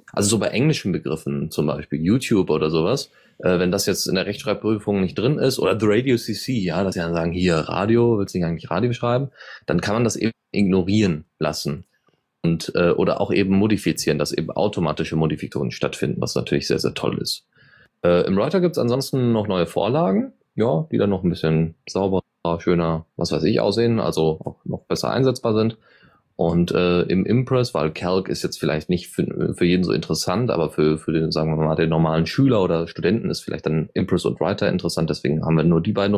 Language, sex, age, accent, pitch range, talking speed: German, male, 30-49, German, 85-115 Hz, 210 wpm